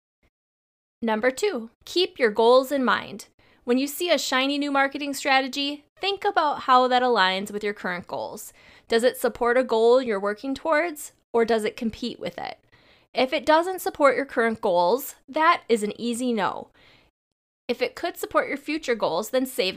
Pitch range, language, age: 220-295 Hz, English, 20-39